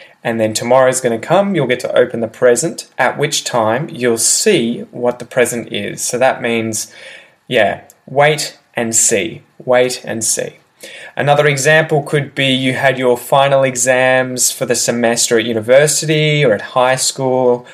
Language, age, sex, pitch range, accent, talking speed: English, 20-39, male, 115-135 Hz, Australian, 170 wpm